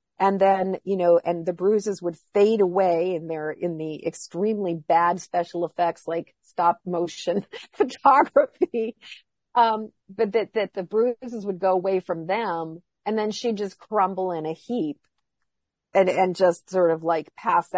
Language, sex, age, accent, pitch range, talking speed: English, female, 50-69, American, 165-210 Hz, 160 wpm